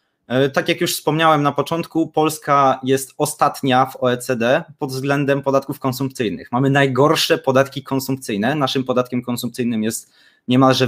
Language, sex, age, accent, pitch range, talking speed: Polish, male, 20-39, native, 125-150 Hz, 130 wpm